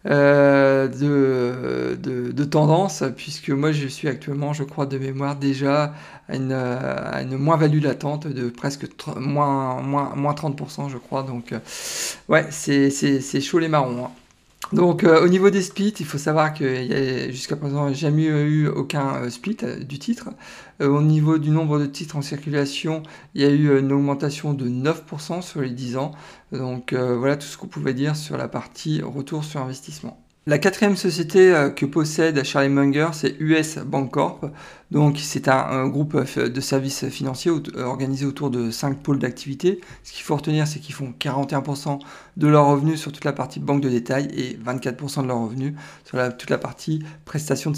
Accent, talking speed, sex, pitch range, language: French, 185 wpm, male, 135-155 Hz, French